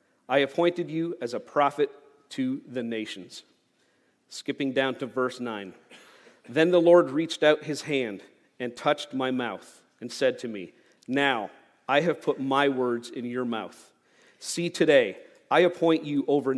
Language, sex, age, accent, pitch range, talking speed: English, male, 40-59, American, 125-155 Hz, 160 wpm